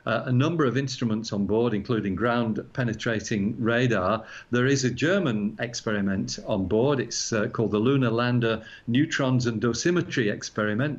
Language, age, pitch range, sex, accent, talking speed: English, 50-69, 110-130 Hz, male, British, 145 wpm